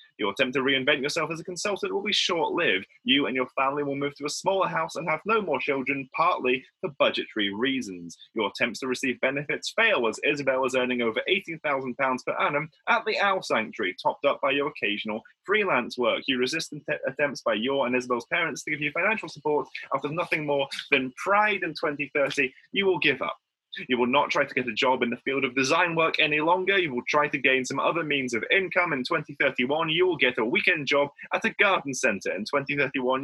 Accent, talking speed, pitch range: British, 215 wpm, 130-175 Hz